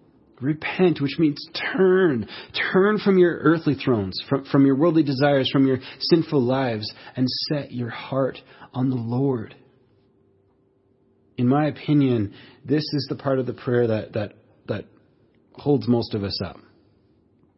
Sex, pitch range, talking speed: male, 110-155 Hz, 145 wpm